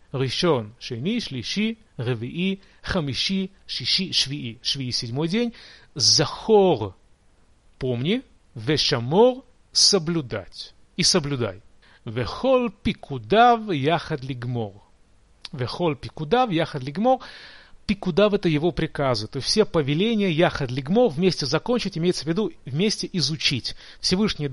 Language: Russian